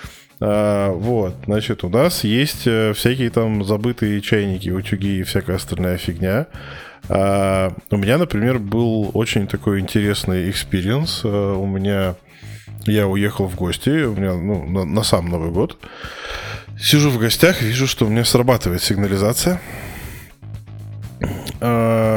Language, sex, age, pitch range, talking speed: Russian, male, 20-39, 95-115 Hz, 135 wpm